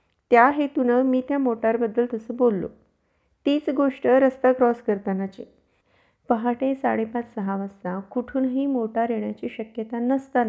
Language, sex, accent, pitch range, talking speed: Marathi, female, native, 225-265 Hz, 130 wpm